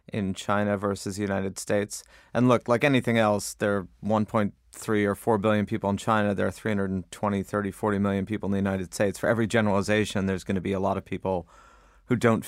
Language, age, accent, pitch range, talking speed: English, 30-49, American, 95-110 Hz, 210 wpm